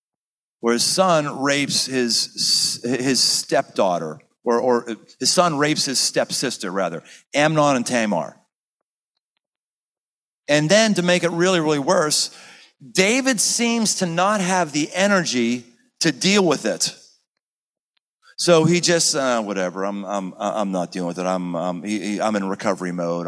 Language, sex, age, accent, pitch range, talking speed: English, male, 40-59, American, 125-190 Hz, 145 wpm